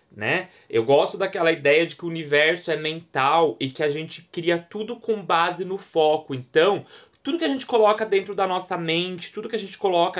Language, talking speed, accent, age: Portuguese, 210 wpm, Brazilian, 20-39